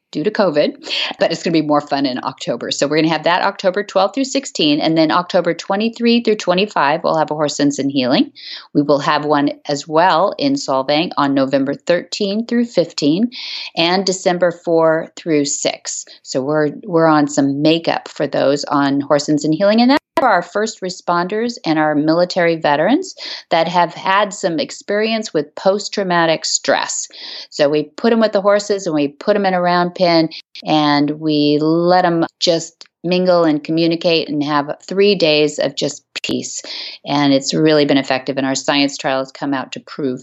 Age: 40-59